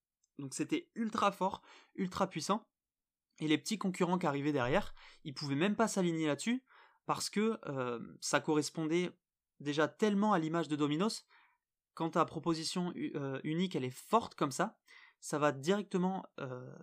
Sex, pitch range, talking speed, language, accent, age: male, 145-185 Hz, 155 wpm, French, French, 20-39